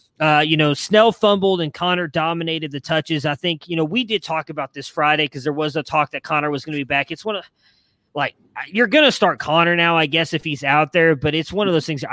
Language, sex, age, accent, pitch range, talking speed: English, male, 20-39, American, 135-175 Hz, 265 wpm